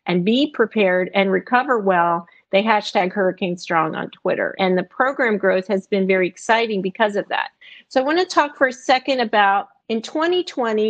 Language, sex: English, female